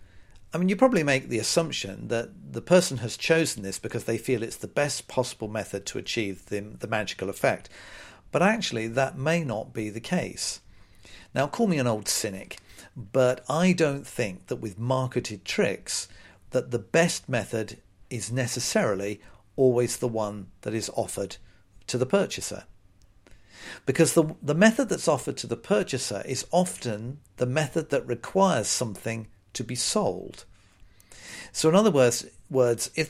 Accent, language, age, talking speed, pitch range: British, English, 50-69, 160 wpm, 105-135 Hz